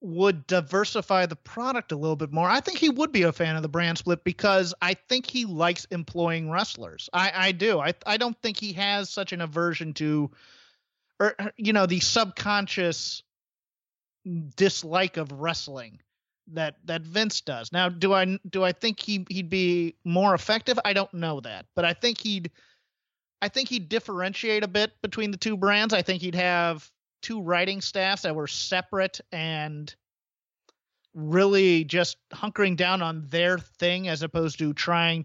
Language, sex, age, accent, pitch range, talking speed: English, male, 30-49, American, 160-200 Hz, 175 wpm